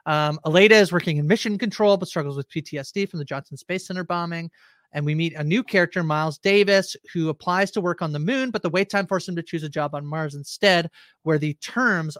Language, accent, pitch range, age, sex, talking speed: English, American, 150-190 Hz, 30-49, male, 235 wpm